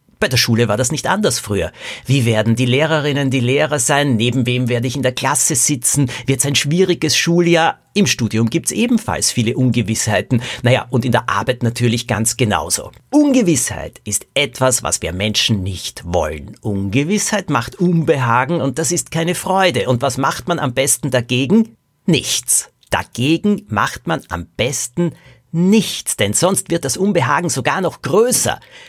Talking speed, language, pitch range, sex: 170 wpm, German, 115-160 Hz, male